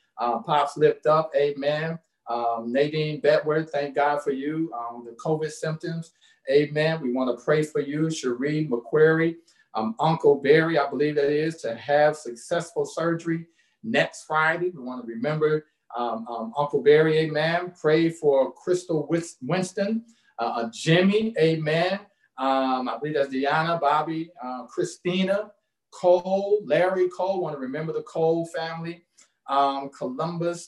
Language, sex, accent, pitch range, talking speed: English, male, American, 140-170 Hz, 145 wpm